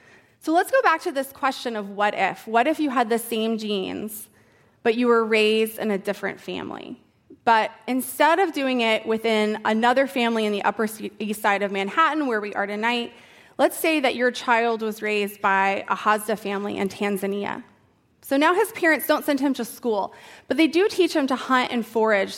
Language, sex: English, female